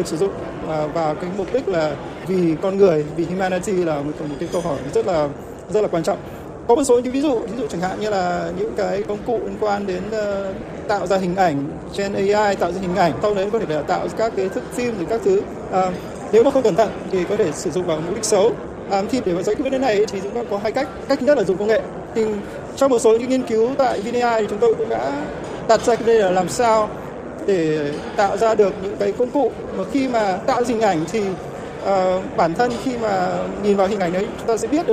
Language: Vietnamese